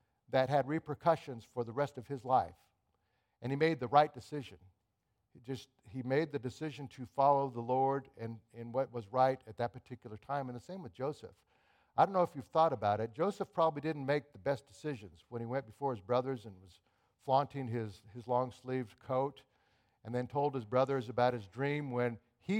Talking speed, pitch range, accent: 205 wpm, 120-150 Hz, American